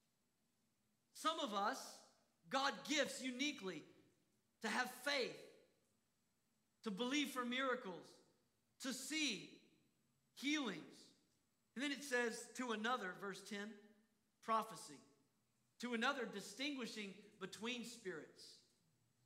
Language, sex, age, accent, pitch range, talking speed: English, male, 40-59, American, 205-255 Hz, 95 wpm